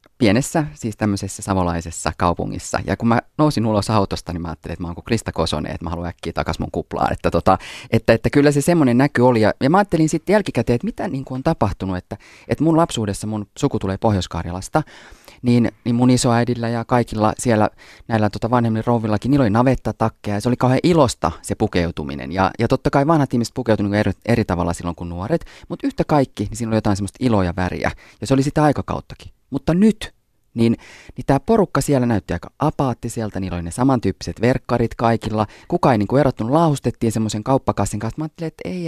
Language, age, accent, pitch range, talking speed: Finnish, 30-49, native, 95-135 Hz, 200 wpm